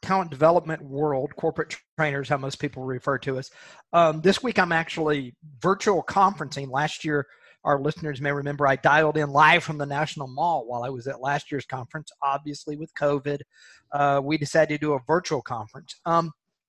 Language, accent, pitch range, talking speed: English, American, 145-175 Hz, 185 wpm